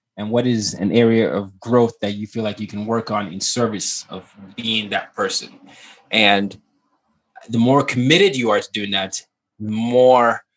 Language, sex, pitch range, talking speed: English, male, 110-130 Hz, 180 wpm